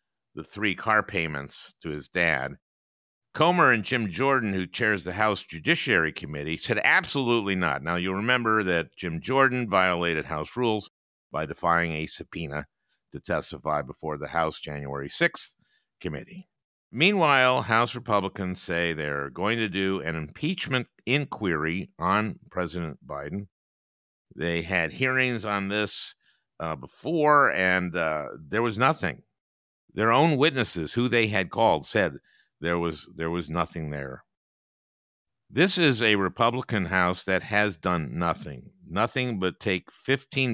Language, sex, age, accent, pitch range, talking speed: English, male, 50-69, American, 85-110 Hz, 140 wpm